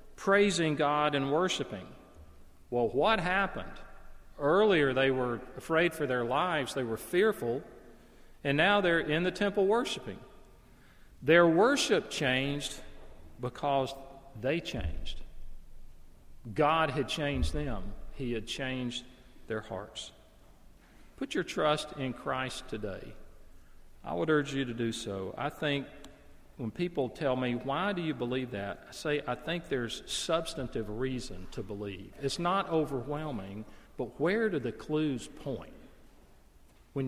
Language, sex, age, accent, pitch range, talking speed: English, male, 40-59, American, 105-150 Hz, 135 wpm